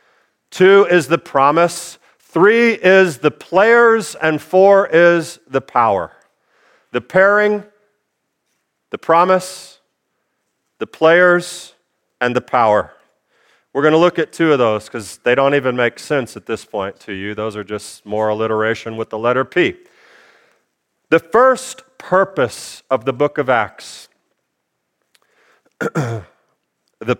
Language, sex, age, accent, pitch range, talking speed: English, male, 40-59, American, 150-195 Hz, 130 wpm